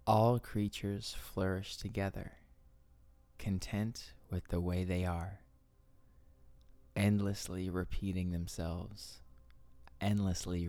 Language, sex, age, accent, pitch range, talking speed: English, male, 20-39, American, 65-100 Hz, 80 wpm